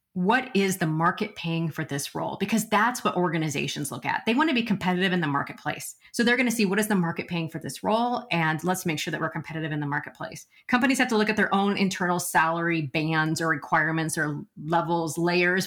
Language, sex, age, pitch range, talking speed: English, female, 30-49, 175-235 Hz, 230 wpm